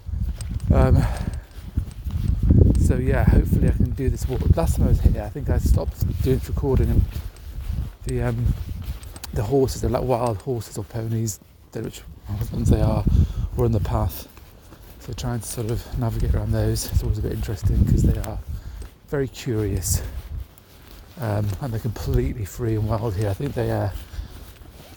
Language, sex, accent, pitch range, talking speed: English, male, British, 85-115 Hz, 175 wpm